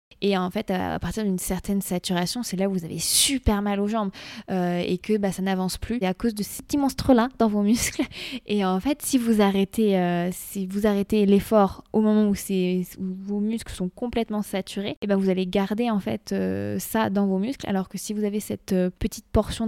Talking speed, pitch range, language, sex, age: 230 wpm, 190-215 Hz, French, female, 20-39